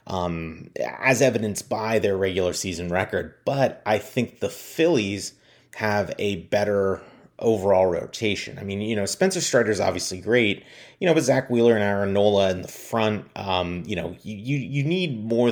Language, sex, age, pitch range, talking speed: English, male, 30-49, 95-125 Hz, 180 wpm